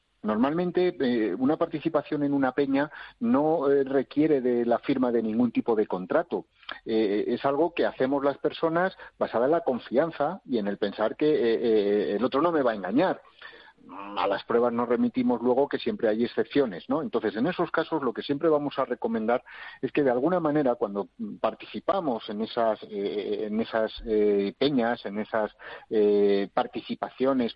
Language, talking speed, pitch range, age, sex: Spanish, 180 wpm, 110-160 Hz, 50-69, male